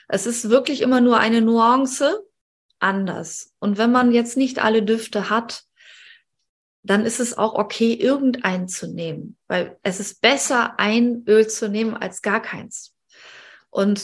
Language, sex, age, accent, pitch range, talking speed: German, female, 20-39, German, 200-235 Hz, 155 wpm